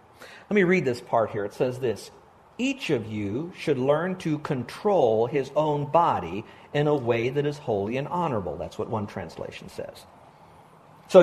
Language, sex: English, male